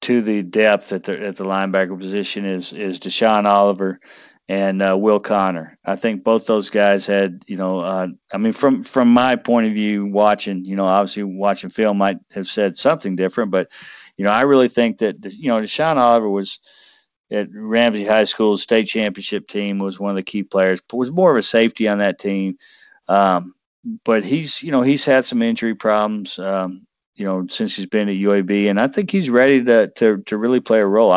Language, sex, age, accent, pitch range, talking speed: English, male, 50-69, American, 100-115 Hz, 210 wpm